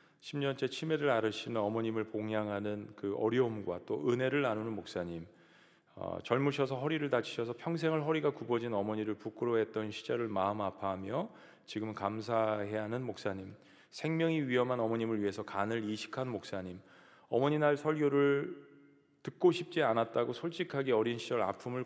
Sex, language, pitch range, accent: male, Korean, 105-135 Hz, native